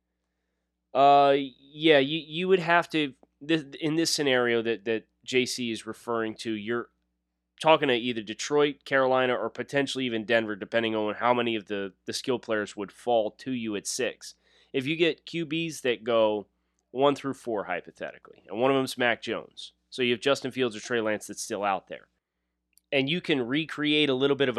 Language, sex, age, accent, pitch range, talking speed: English, male, 20-39, American, 105-135 Hz, 190 wpm